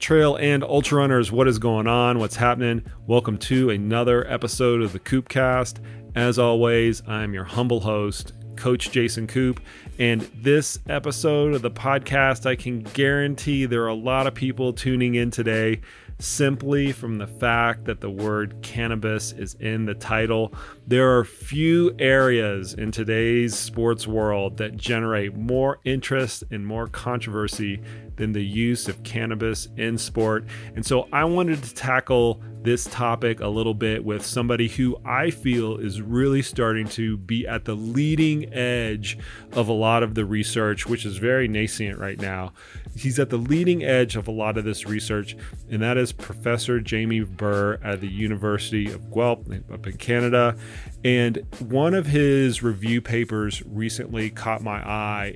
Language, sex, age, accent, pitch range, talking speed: English, male, 40-59, American, 110-125 Hz, 165 wpm